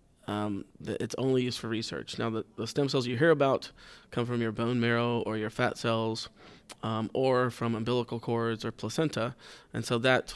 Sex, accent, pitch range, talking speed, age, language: male, American, 115-125 Hz, 195 wpm, 20-39, English